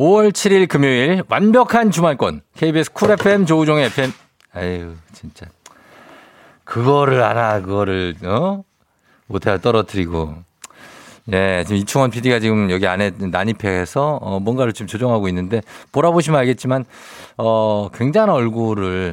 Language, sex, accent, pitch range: Korean, male, native, 100-145 Hz